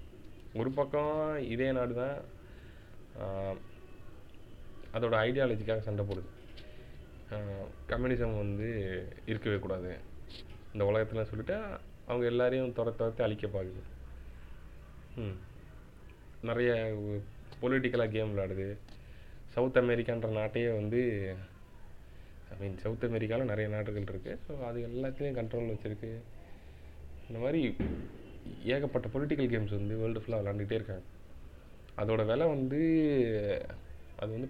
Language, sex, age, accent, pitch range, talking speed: Tamil, male, 20-39, native, 90-120 Hz, 100 wpm